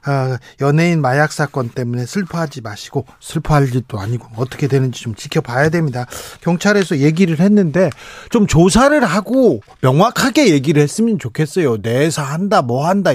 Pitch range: 140-180 Hz